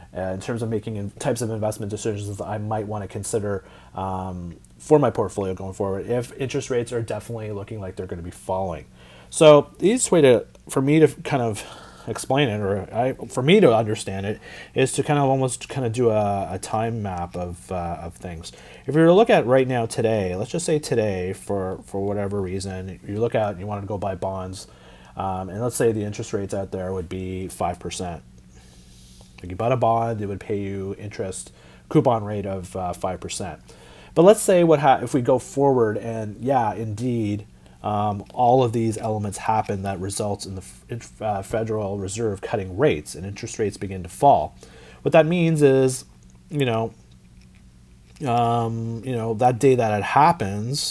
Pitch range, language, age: 95-115 Hz, English, 30-49